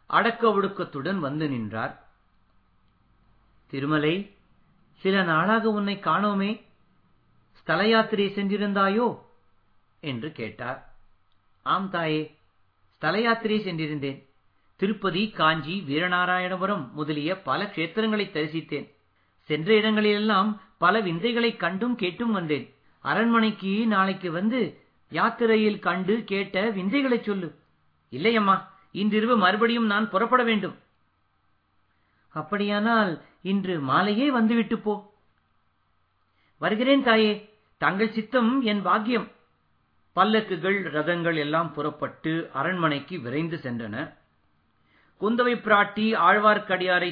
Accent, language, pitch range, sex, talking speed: native, Tamil, 145-215 Hz, male, 85 wpm